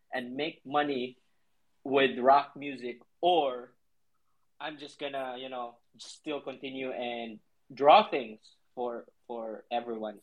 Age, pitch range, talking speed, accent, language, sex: 20-39, 120-145 Hz, 125 wpm, Filipino, English, male